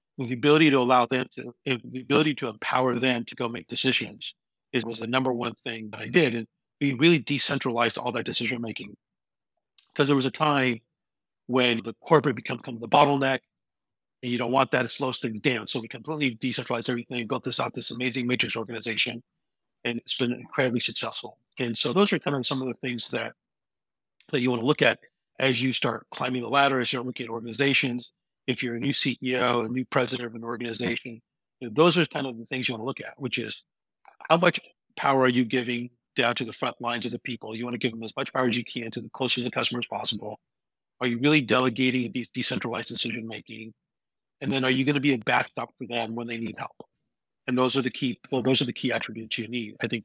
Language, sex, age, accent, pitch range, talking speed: English, male, 50-69, American, 120-130 Hz, 230 wpm